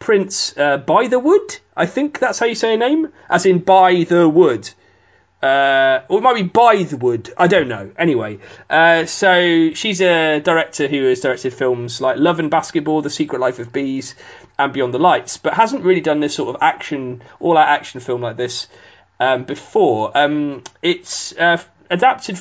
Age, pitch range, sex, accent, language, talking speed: 30-49, 130-180 Hz, male, British, English, 190 wpm